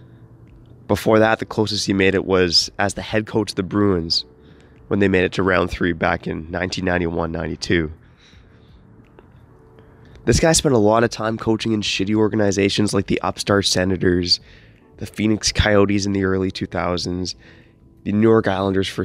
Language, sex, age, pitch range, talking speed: English, male, 20-39, 95-120 Hz, 165 wpm